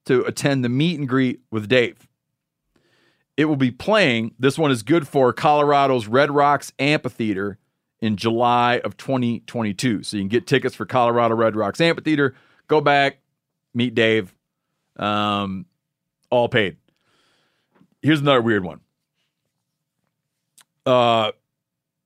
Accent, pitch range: American, 120-155 Hz